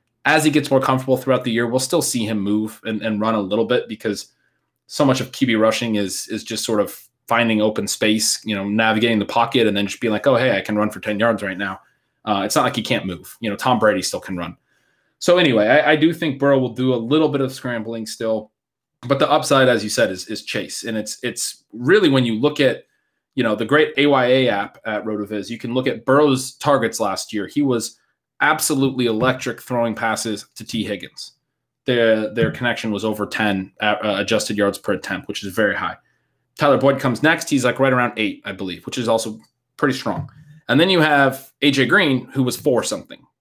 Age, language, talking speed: 20-39, English, 225 wpm